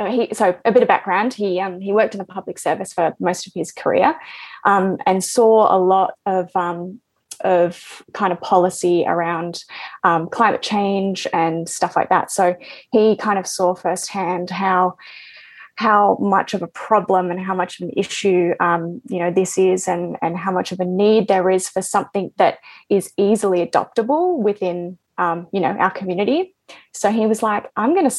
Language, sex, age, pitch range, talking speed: English, female, 20-39, 180-205 Hz, 190 wpm